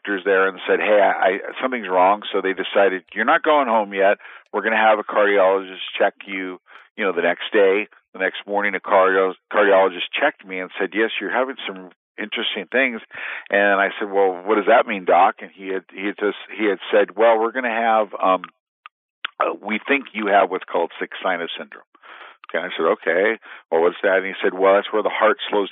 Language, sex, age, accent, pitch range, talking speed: English, male, 50-69, American, 95-110 Hz, 220 wpm